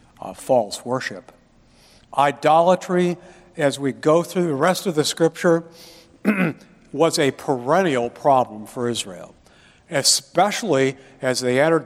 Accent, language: American, English